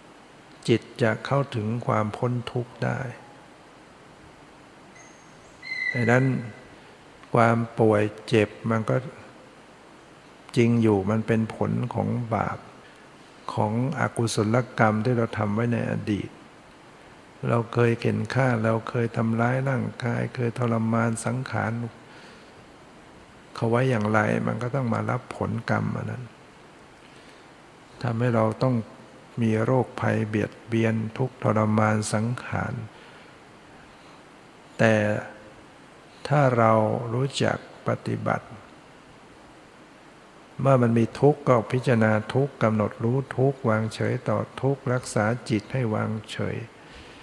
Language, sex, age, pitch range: Thai, male, 60-79, 110-125 Hz